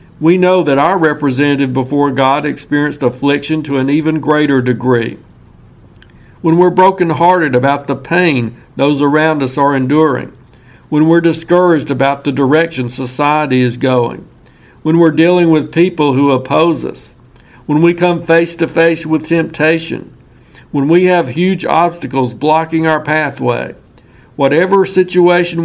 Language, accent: English, American